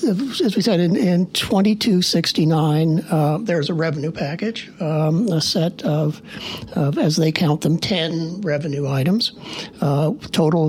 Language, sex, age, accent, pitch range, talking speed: English, male, 60-79, American, 155-190 Hz, 140 wpm